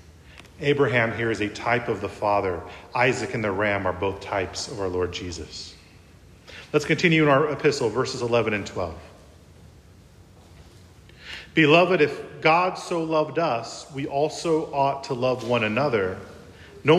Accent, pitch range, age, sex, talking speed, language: American, 100-155 Hz, 40-59, male, 150 wpm, English